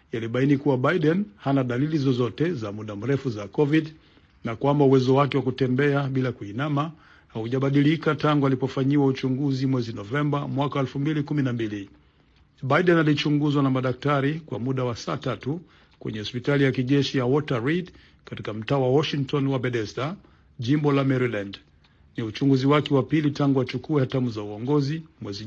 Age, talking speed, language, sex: 50-69, 150 wpm, Swahili, male